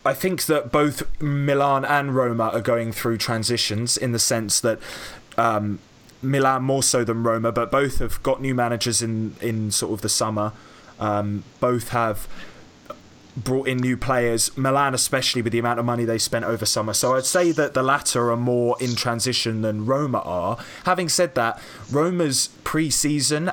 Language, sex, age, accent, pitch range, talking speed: English, male, 20-39, British, 115-135 Hz, 175 wpm